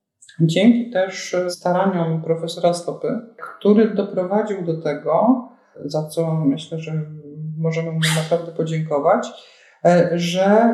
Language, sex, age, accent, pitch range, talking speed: Polish, male, 50-69, native, 165-200 Hz, 100 wpm